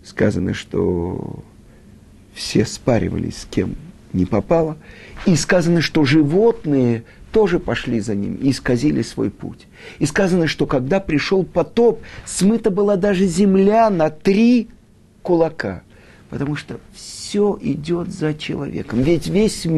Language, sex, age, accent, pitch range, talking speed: Russian, male, 50-69, native, 110-175 Hz, 125 wpm